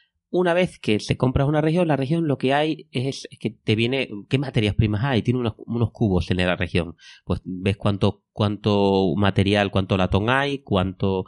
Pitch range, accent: 90-130 Hz, Spanish